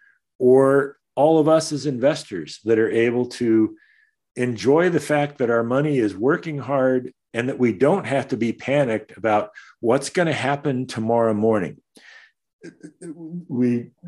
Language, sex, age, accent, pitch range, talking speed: English, male, 50-69, American, 105-140 Hz, 150 wpm